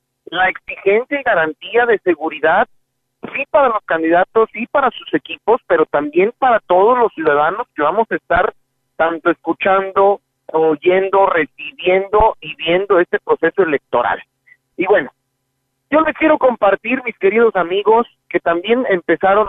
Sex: male